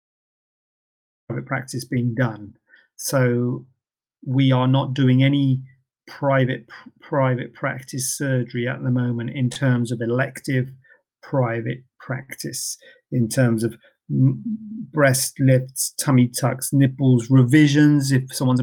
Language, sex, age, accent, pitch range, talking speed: English, male, 40-59, British, 120-140 Hz, 105 wpm